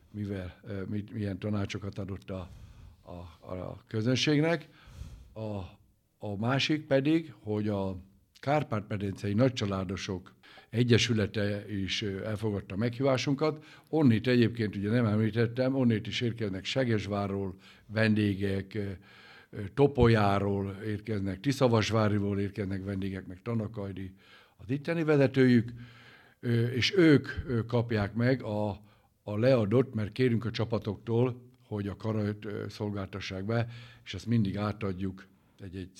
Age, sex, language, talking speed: 60-79, male, Hungarian, 105 wpm